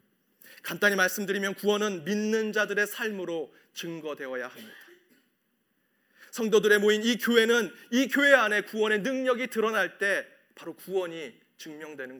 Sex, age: male, 30-49